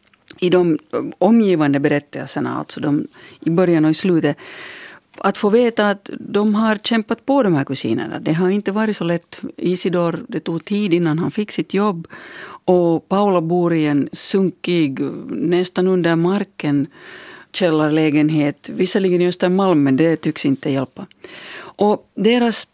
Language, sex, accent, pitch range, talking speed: Finnish, female, native, 155-195 Hz, 150 wpm